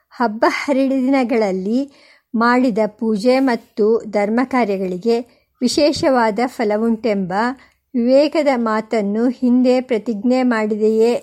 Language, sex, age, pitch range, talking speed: Kannada, male, 50-69, 230-275 Hz, 75 wpm